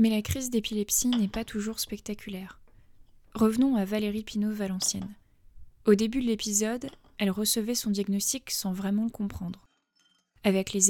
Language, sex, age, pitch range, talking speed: French, female, 20-39, 185-215 Hz, 150 wpm